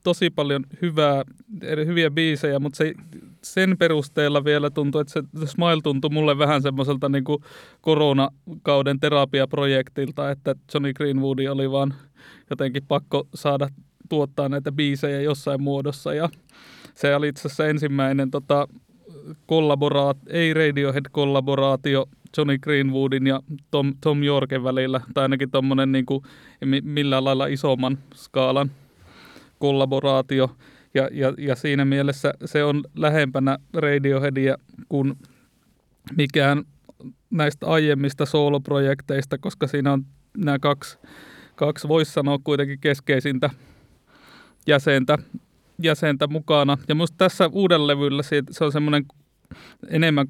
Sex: male